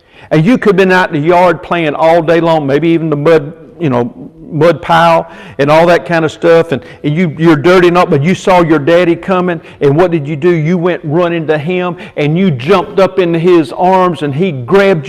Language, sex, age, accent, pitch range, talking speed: English, male, 50-69, American, 155-185 Hz, 230 wpm